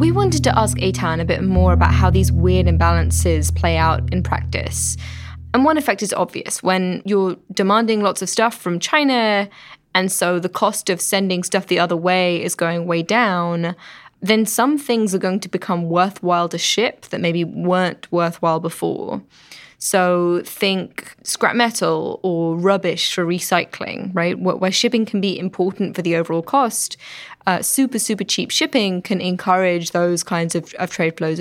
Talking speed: 170 wpm